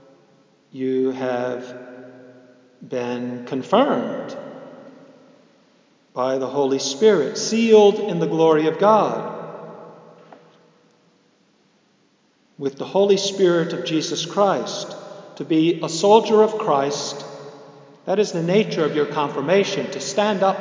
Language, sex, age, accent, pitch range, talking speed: English, male, 50-69, American, 135-175 Hz, 110 wpm